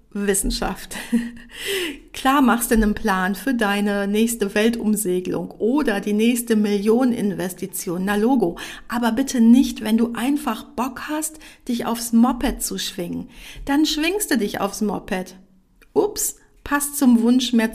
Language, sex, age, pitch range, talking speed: German, female, 50-69, 220-275 Hz, 130 wpm